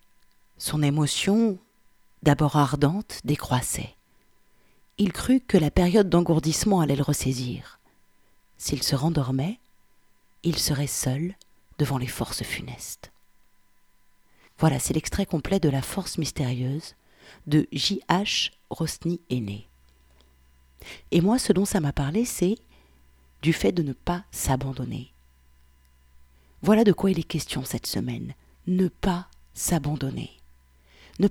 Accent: French